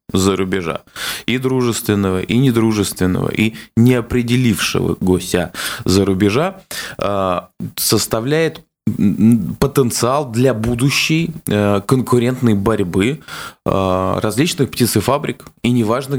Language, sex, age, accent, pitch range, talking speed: Russian, male, 20-39, native, 100-125 Hz, 80 wpm